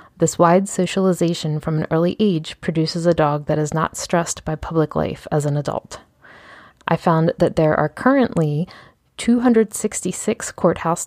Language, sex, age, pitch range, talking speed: English, female, 20-39, 160-185 Hz, 150 wpm